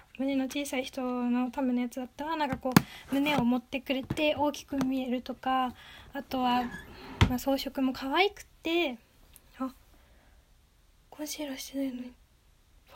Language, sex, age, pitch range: Japanese, female, 10-29, 250-300 Hz